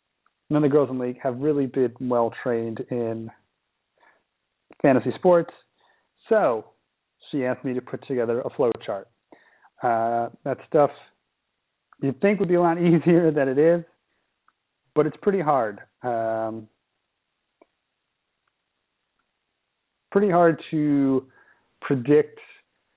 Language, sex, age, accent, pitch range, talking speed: English, male, 40-59, American, 120-160 Hz, 125 wpm